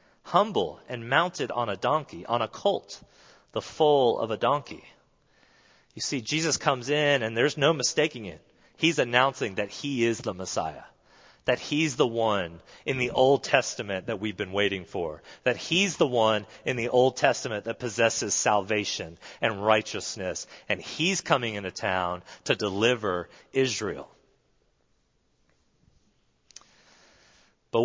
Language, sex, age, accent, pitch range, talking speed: English, male, 30-49, American, 105-140 Hz, 140 wpm